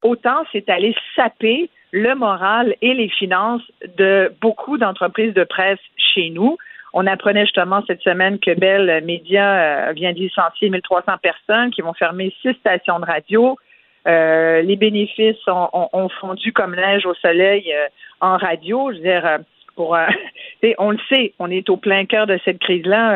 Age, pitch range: 50-69, 185-230 Hz